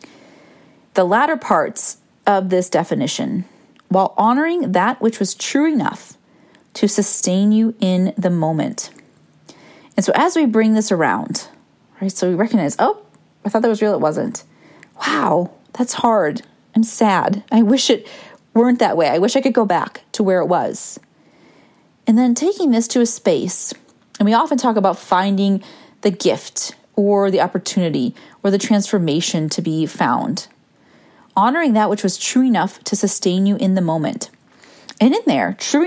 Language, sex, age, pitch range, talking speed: English, female, 30-49, 195-265 Hz, 165 wpm